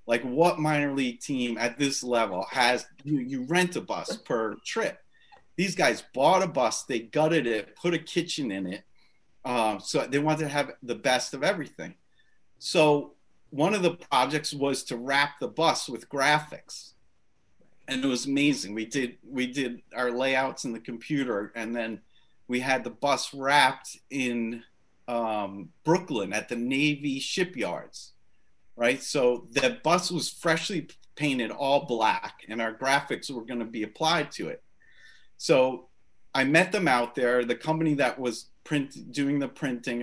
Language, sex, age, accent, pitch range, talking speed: English, male, 40-59, American, 115-145 Hz, 165 wpm